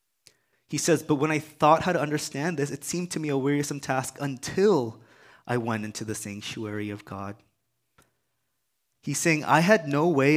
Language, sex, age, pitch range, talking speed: English, male, 20-39, 115-150 Hz, 180 wpm